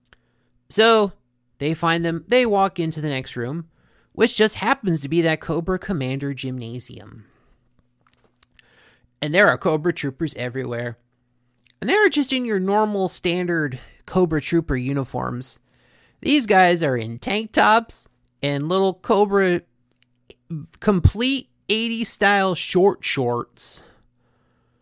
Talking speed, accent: 120 wpm, American